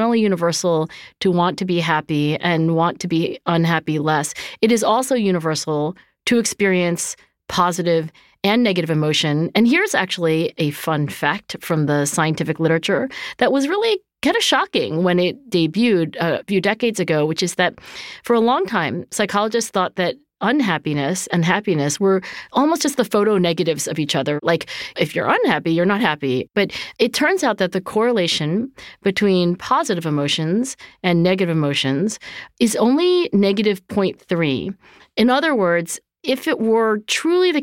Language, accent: English, American